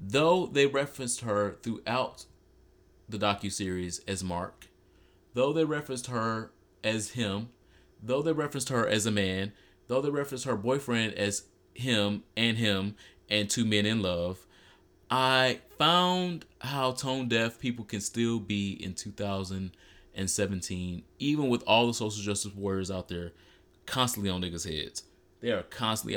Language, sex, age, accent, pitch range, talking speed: English, male, 30-49, American, 95-125 Hz, 140 wpm